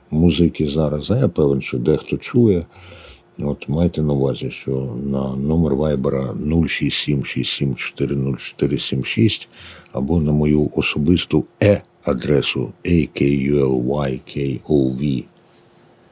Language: Ukrainian